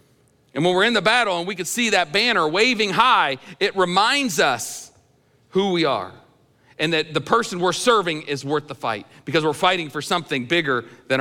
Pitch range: 125-175 Hz